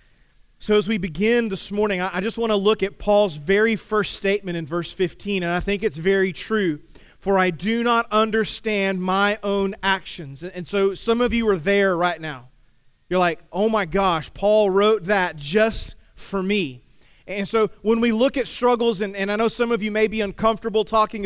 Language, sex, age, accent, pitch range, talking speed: English, male, 30-49, American, 180-215 Hz, 200 wpm